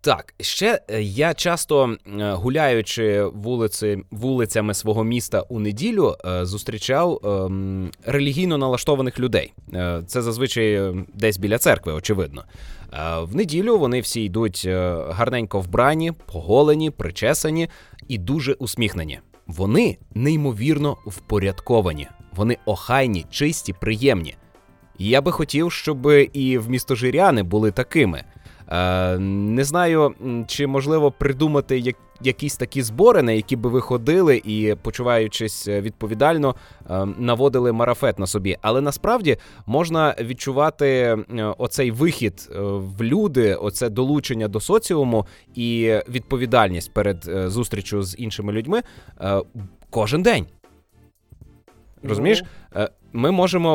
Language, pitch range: Russian, 100-140 Hz